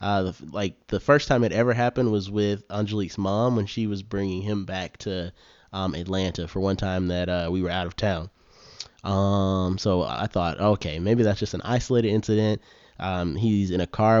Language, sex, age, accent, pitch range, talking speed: English, male, 20-39, American, 95-110 Hz, 200 wpm